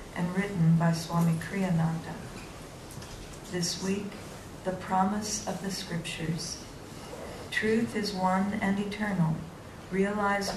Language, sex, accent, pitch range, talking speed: English, female, American, 170-205 Hz, 100 wpm